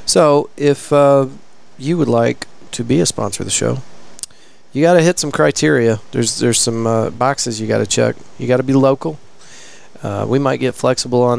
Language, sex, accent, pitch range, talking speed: English, male, American, 115-135 Hz, 205 wpm